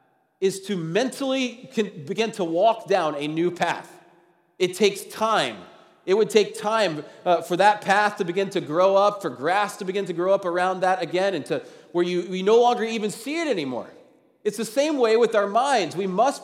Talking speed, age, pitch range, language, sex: 210 wpm, 30-49, 170-225 Hz, English, male